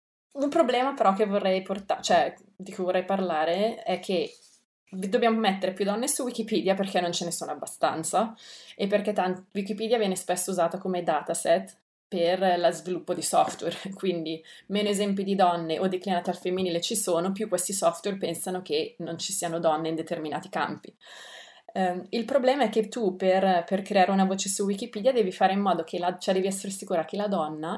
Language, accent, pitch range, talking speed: Italian, native, 180-210 Hz, 190 wpm